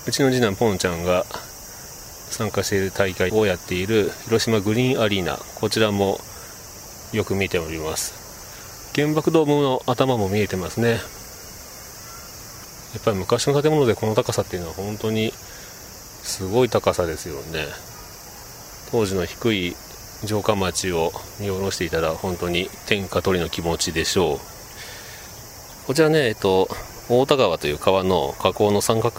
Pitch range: 90-115 Hz